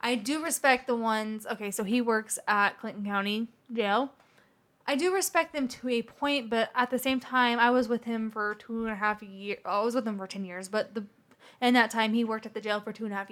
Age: 20-39